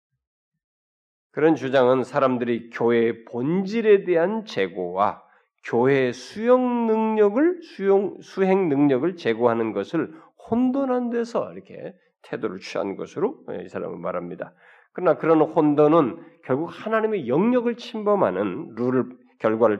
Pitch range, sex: 110-170 Hz, male